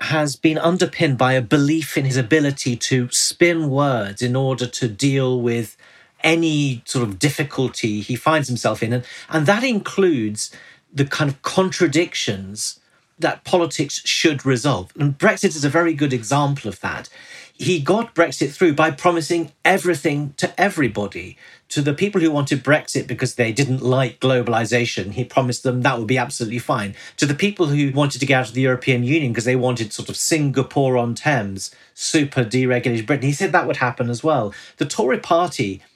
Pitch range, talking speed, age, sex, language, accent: 125-160 Hz, 180 wpm, 40-59, male, English, British